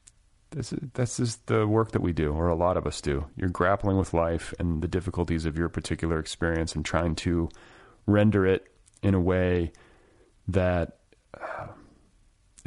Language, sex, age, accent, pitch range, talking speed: English, male, 30-49, American, 80-100 Hz, 165 wpm